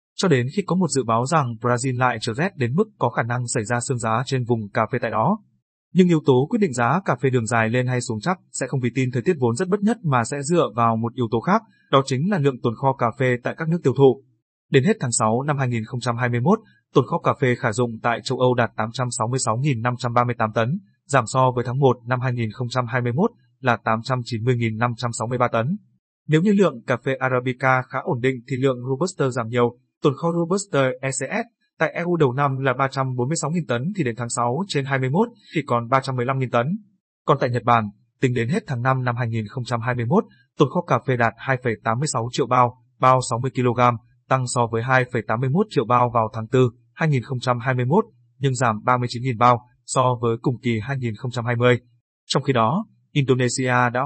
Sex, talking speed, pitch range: male, 200 wpm, 120-145 Hz